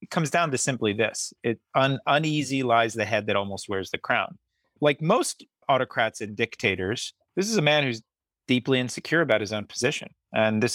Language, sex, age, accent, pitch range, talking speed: English, male, 30-49, American, 100-130 Hz, 195 wpm